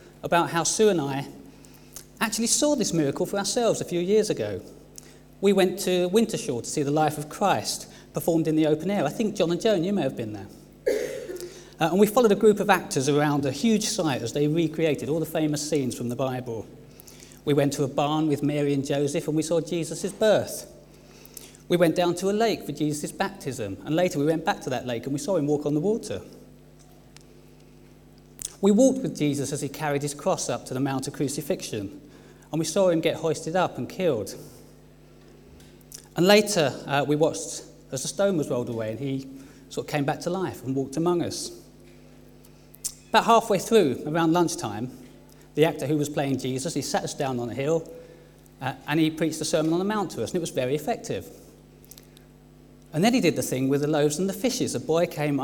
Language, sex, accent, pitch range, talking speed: English, male, British, 140-180 Hz, 215 wpm